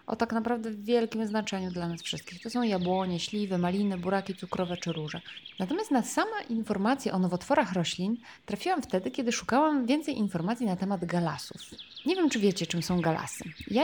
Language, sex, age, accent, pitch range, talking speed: Polish, female, 20-39, native, 185-240 Hz, 180 wpm